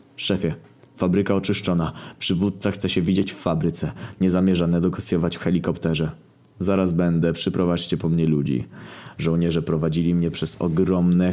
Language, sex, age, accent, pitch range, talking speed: Polish, male, 20-39, native, 90-130 Hz, 135 wpm